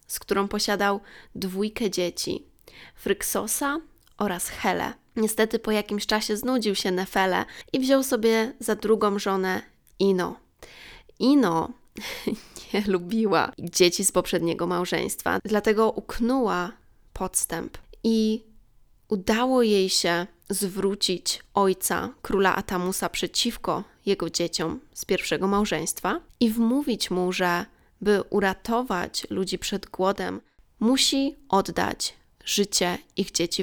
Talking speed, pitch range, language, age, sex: 105 wpm, 185-220 Hz, Polish, 20-39, female